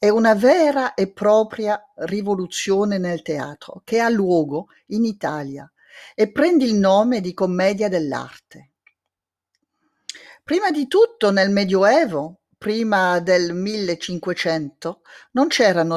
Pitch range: 170-235 Hz